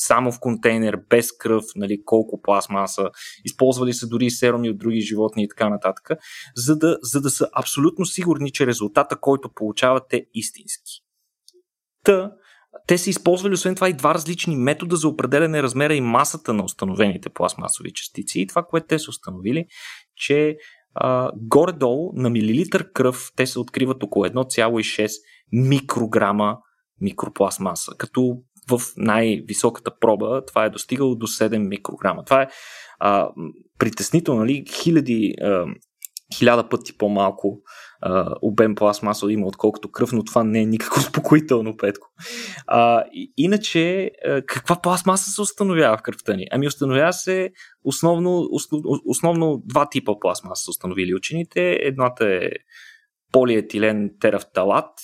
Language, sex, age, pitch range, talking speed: Bulgarian, male, 20-39, 110-165 Hz, 140 wpm